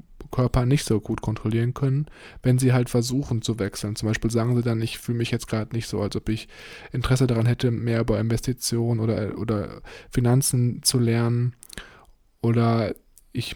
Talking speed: 175 wpm